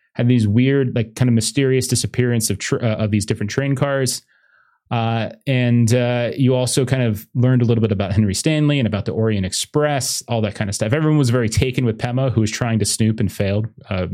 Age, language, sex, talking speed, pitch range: 30-49, English, male, 230 wpm, 110-140 Hz